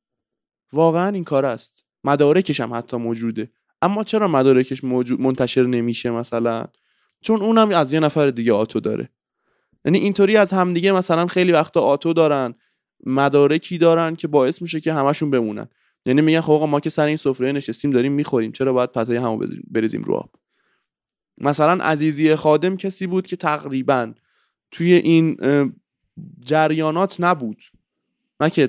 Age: 20-39